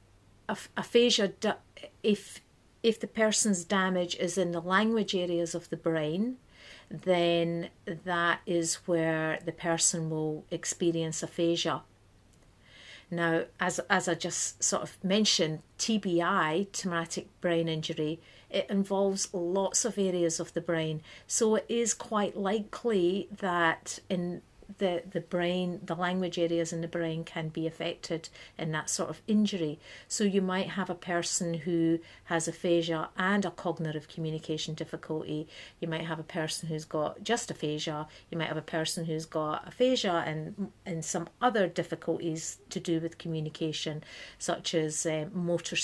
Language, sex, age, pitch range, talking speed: English, female, 50-69, 160-190 Hz, 145 wpm